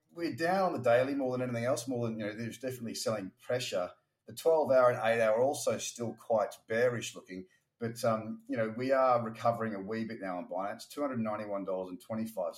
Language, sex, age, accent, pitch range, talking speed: English, male, 30-49, Australian, 110-135 Hz, 210 wpm